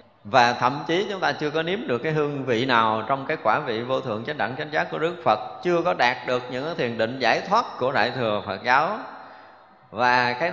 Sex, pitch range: male, 115-150 Hz